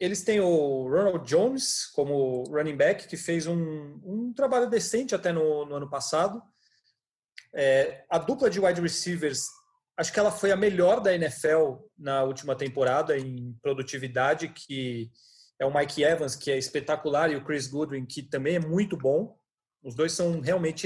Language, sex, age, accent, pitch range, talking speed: Portuguese, male, 30-49, Brazilian, 150-200 Hz, 165 wpm